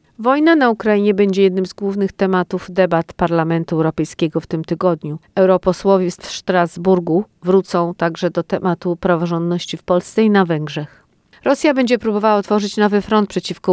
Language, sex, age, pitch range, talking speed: Polish, female, 50-69, 170-195 Hz, 150 wpm